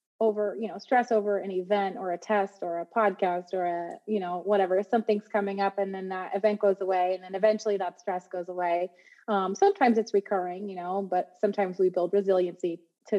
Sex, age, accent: female, 20-39, American